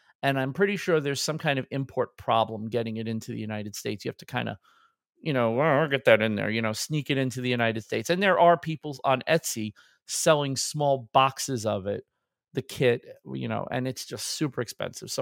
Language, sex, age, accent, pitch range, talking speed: English, male, 40-59, American, 125-170 Hz, 220 wpm